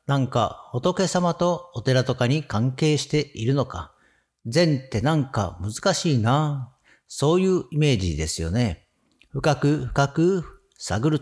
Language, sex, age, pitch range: Japanese, male, 50-69, 115-165 Hz